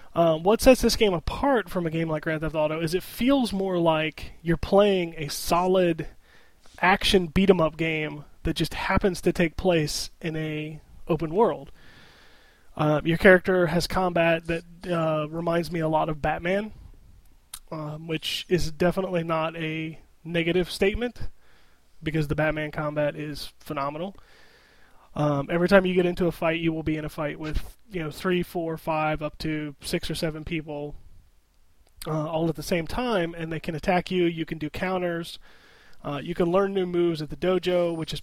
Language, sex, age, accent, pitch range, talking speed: English, male, 20-39, American, 155-180 Hz, 180 wpm